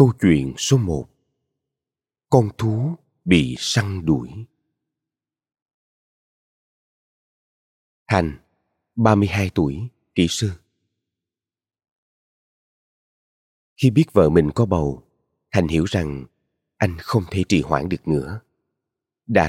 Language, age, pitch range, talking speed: Vietnamese, 30-49, 90-120 Hz, 95 wpm